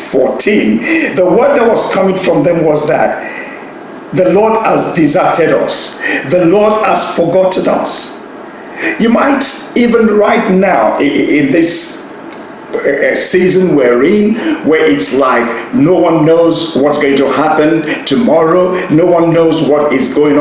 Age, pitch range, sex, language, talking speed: 50-69, 175-225 Hz, male, English, 140 wpm